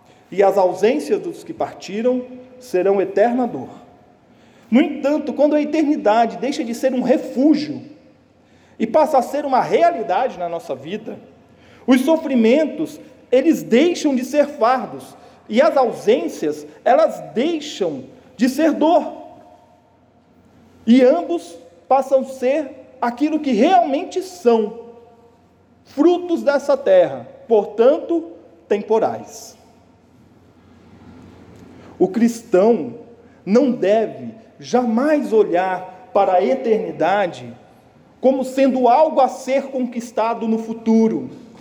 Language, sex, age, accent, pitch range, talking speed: Portuguese, male, 40-59, Brazilian, 225-285 Hz, 105 wpm